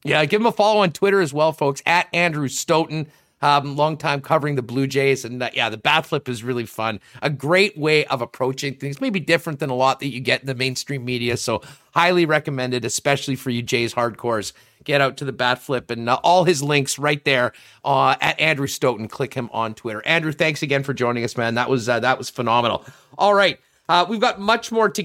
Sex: male